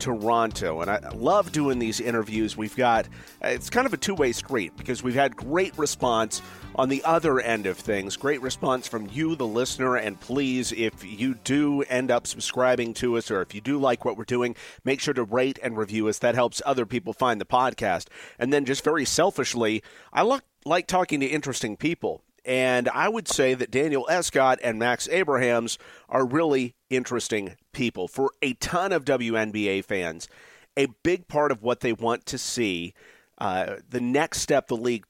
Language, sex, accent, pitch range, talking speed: English, male, American, 115-140 Hz, 190 wpm